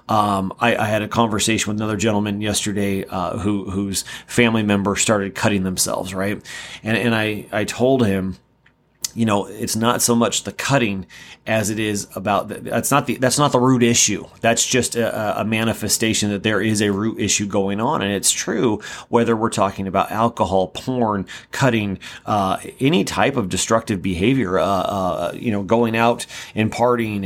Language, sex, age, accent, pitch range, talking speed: English, male, 30-49, American, 105-125 Hz, 180 wpm